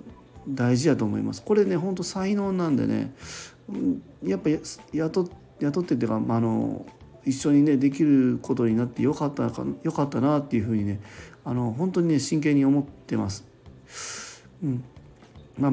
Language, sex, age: Japanese, male, 40-59